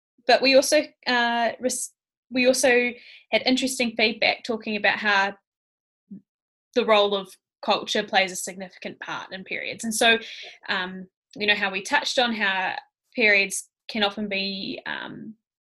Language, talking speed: English, 145 wpm